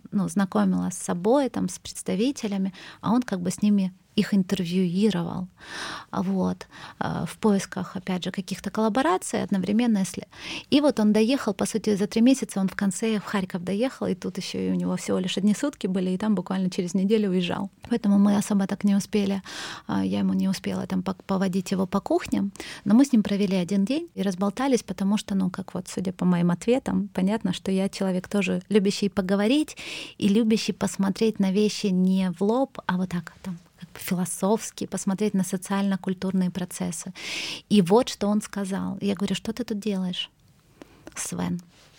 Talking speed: 175 wpm